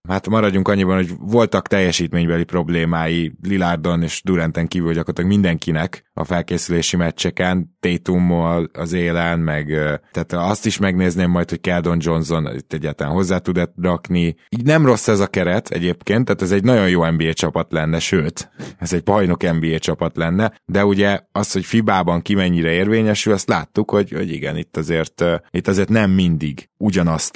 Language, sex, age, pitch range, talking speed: Hungarian, male, 20-39, 85-105 Hz, 165 wpm